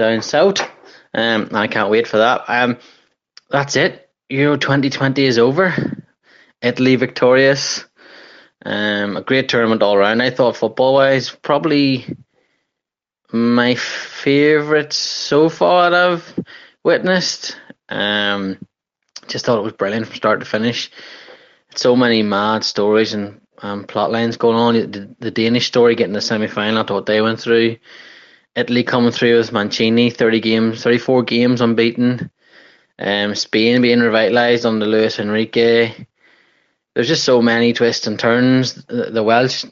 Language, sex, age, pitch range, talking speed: English, male, 20-39, 110-125 Hz, 140 wpm